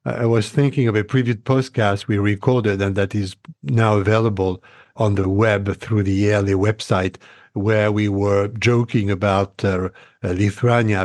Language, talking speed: English, 150 wpm